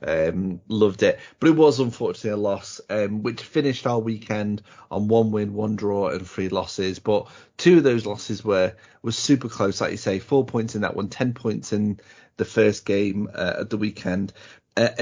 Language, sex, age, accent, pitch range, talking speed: English, male, 30-49, British, 100-120 Hz, 200 wpm